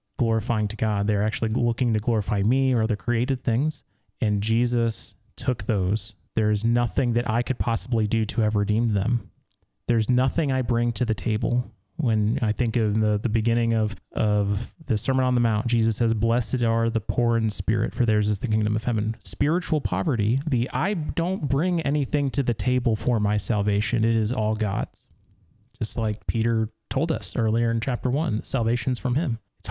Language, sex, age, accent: English, male, 30-49, American